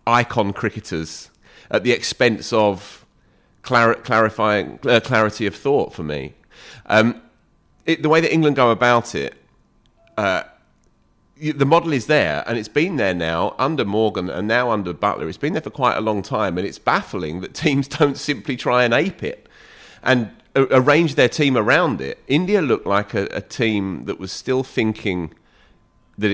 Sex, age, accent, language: male, 30-49, British, English